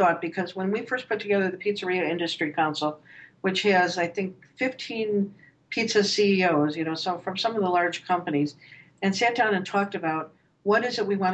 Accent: American